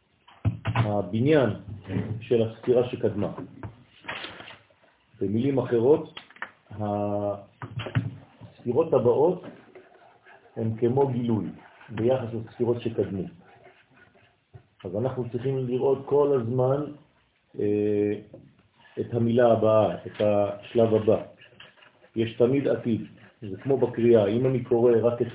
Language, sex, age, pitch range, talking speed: French, male, 40-59, 110-130 Hz, 85 wpm